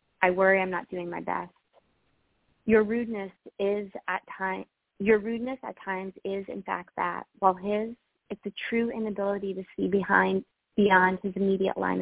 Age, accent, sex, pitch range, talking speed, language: 30-49, American, female, 185-210 Hz, 165 wpm, English